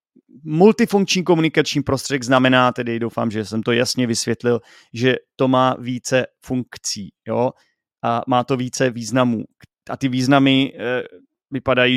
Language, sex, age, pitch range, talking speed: Czech, male, 30-49, 115-140 Hz, 130 wpm